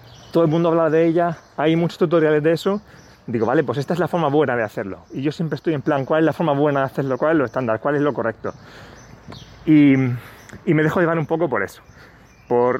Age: 30-49